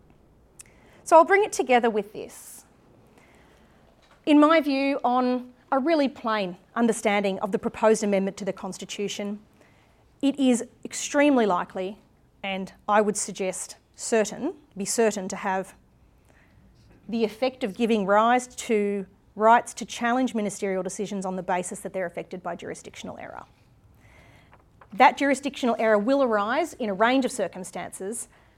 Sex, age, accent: female, 30-49, Australian